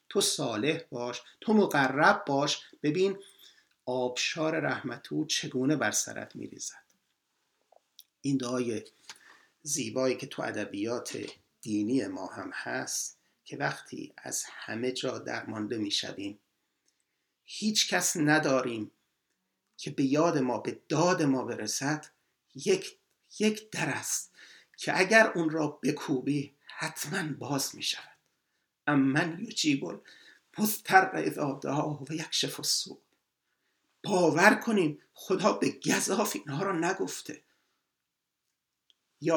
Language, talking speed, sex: Persian, 115 wpm, male